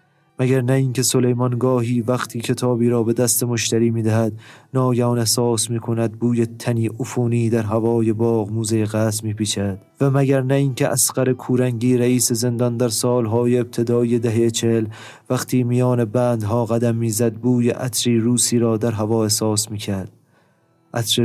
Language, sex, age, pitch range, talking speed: Persian, male, 30-49, 110-125 Hz, 145 wpm